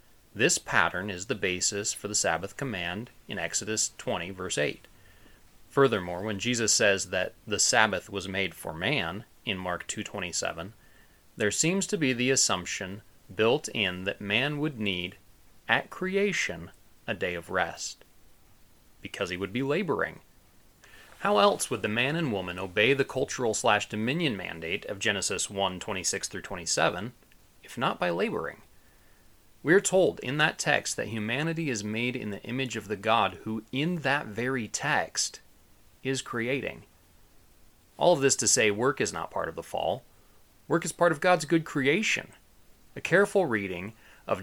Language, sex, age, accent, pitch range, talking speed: English, male, 30-49, American, 95-135 Hz, 155 wpm